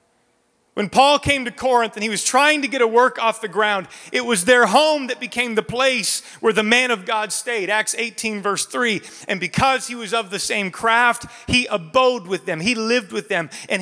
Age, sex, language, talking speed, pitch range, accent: 30-49, male, English, 220 wpm, 210-255 Hz, American